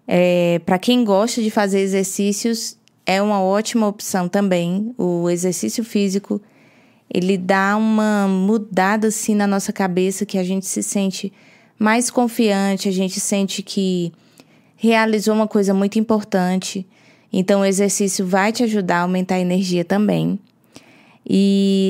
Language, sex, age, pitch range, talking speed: Portuguese, female, 20-39, 190-225 Hz, 140 wpm